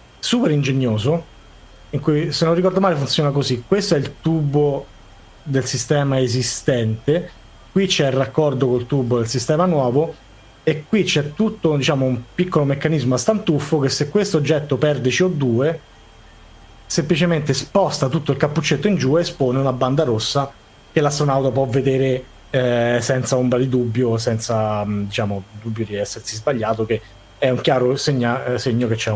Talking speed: 160 wpm